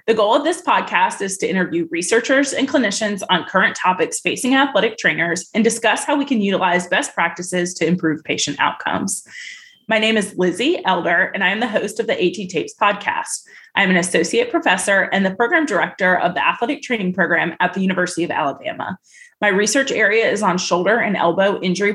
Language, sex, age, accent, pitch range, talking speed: English, female, 20-39, American, 180-250 Hz, 195 wpm